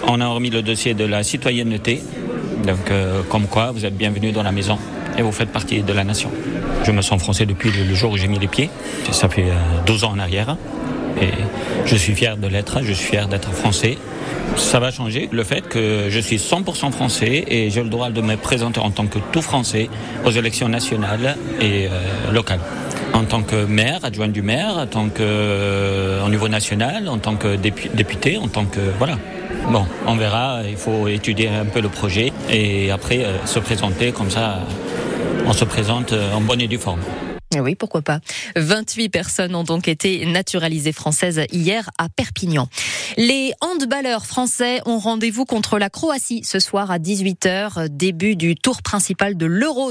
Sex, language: male, French